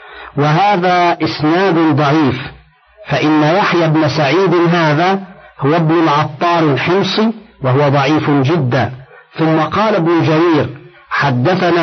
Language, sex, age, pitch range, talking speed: Arabic, male, 50-69, 155-180 Hz, 100 wpm